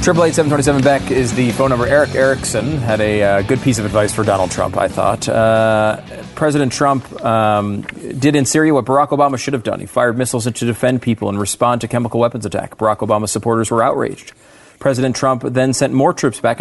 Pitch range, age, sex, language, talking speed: 110-135 Hz, 30-49, male, English, 210 wpm